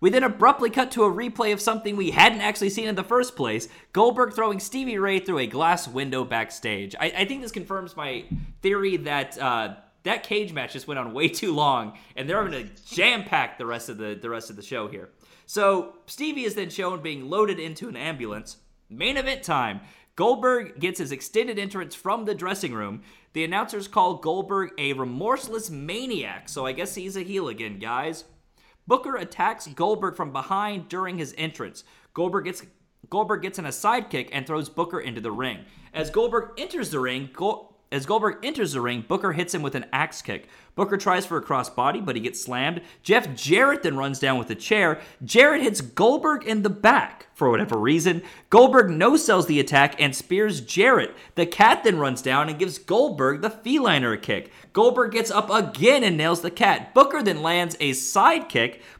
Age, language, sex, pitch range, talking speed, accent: 30-49, English, male, 145-215 Hz, 190 wpm, American